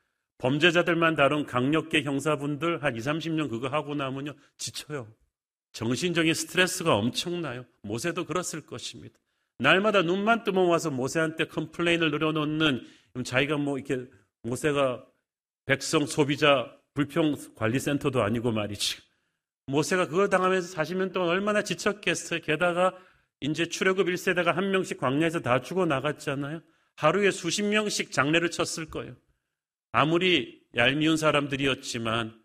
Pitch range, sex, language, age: 140-170 Hz, male, Korean, 40-59